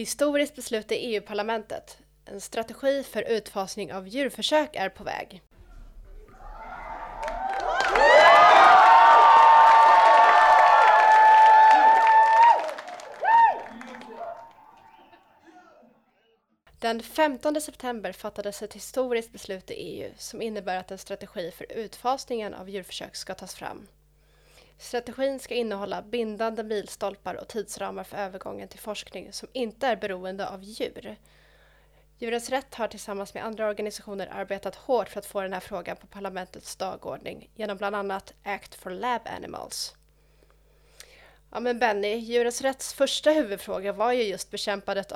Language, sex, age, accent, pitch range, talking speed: Swedish, female, 20-39, native, 195-250 Hz, 115 wpm